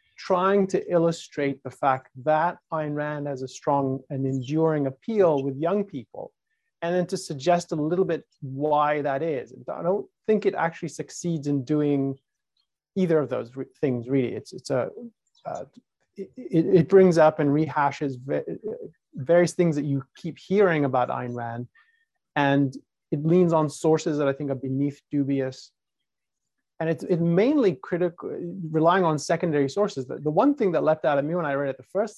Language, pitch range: English, 140-175 Hz